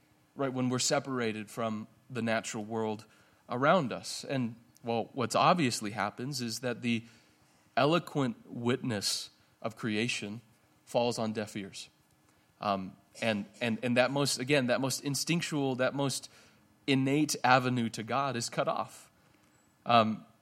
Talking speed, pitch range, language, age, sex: 135 wpm, 110-140 Hz, English, 30-49, male